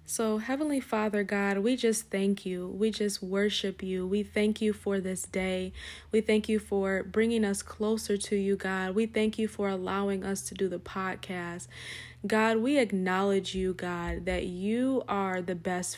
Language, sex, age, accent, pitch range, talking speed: English, female, 20-39, American, 185-215 Hz, 180 wpm